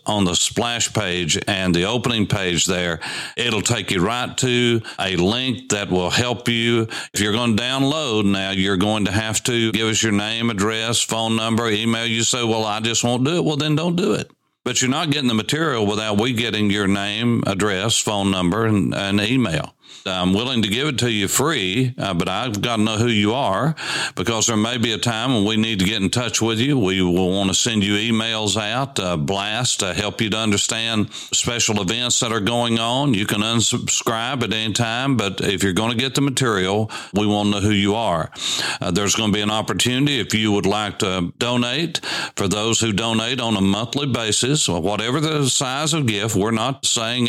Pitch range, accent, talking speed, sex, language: 105-120 Hz, American, 220 wpm, male, English